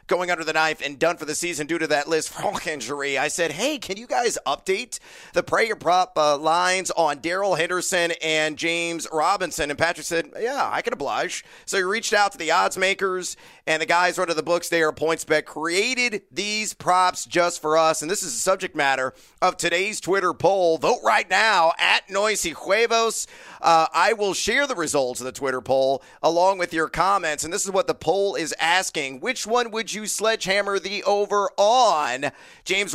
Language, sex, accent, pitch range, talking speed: English, male, American, 155-190 Hz, 200 wpm